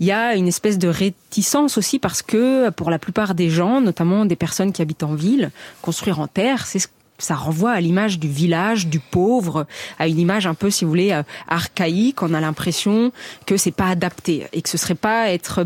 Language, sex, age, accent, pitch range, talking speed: French, female, 30-49, French, 165-205 Hz, 220 wpm